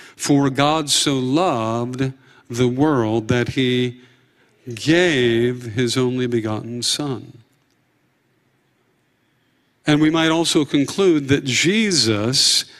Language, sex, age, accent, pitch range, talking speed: English, male, 50-69, American, 125-145 Hz, 95 wpm